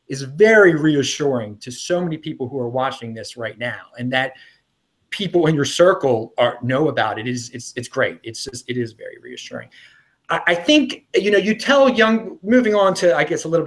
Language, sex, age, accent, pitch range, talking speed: English, male, 30-49, American, 135-185 Hz, 210 wpm